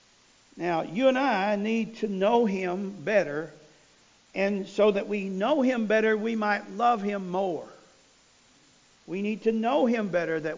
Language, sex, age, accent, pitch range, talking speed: English, male, 50-69, American, 170-235 Hz, 160 wpm